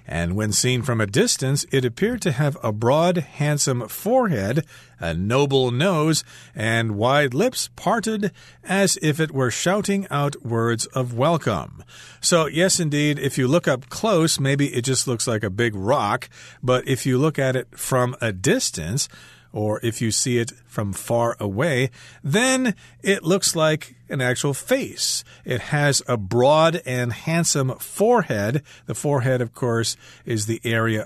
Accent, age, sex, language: American, 40-59, male, Chinese